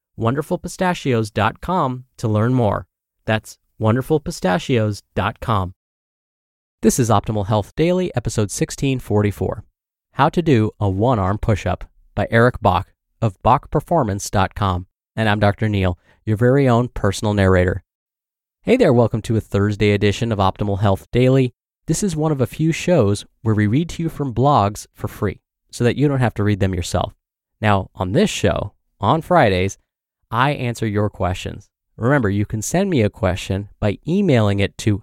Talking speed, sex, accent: 155 wpm, male, American